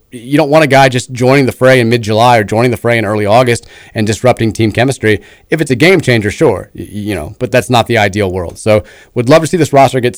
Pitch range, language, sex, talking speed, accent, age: 105-130 Hz, English, male, 260 wpm, American, 30-49